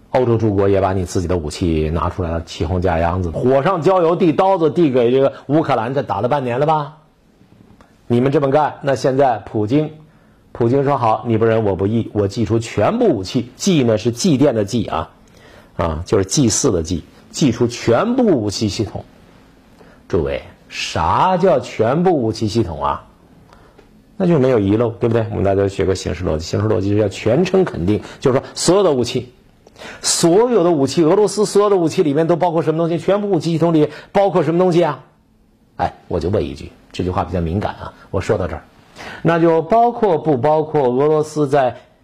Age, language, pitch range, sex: 50-69, Chinese, 105-160 Hz, male